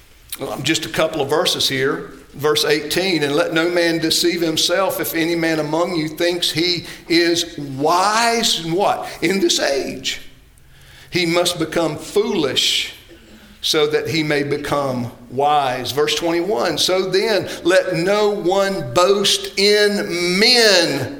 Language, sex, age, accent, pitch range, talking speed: English, male, 50-69, American, 150-195 Hz, 135 wpm